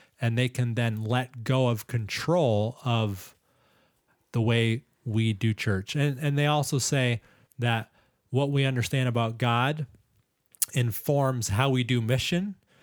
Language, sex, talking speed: English, male, 140 wpm